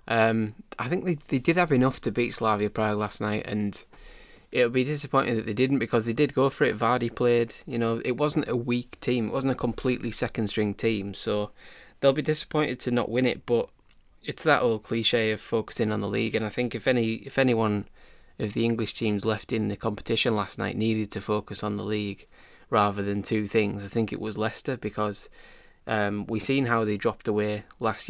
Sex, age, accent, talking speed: male, 20-39, British, 220 wpm